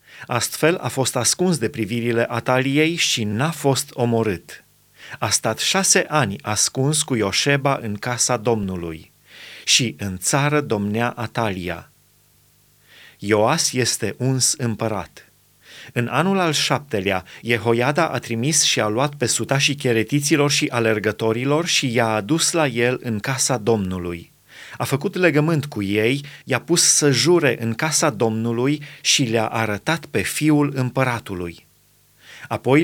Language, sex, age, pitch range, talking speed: Romanian, male, 30-49, 115-150 Hz, 130 wpm